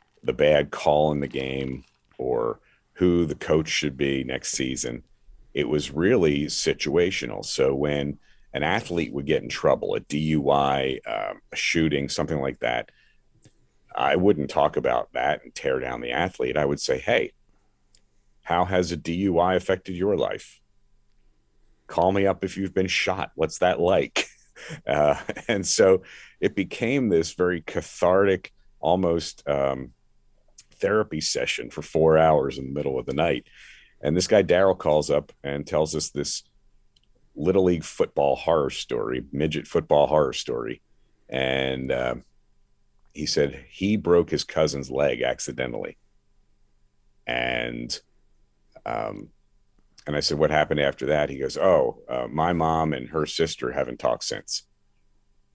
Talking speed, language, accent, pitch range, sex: 145 wpm, English, American, 65-85 Hz, male